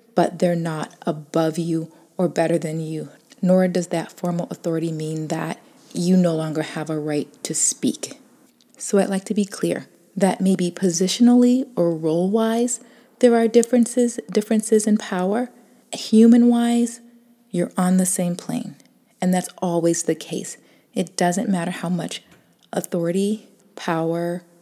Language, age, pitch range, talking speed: English, 30-49, 170-225 Hz, 145 wpm